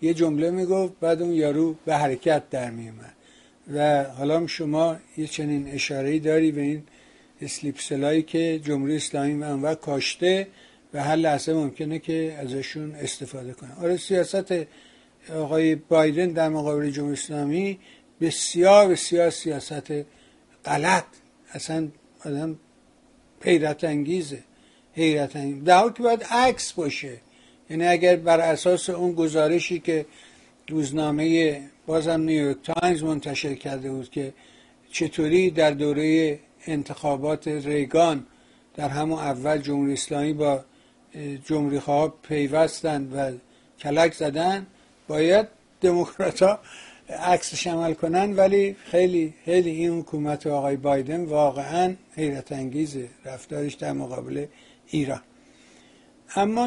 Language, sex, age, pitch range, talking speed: Persian, male, 60-79, 145-170 Hz, 115 wpm